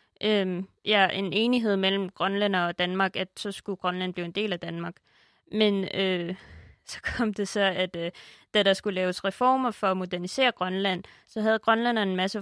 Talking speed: 190 wpm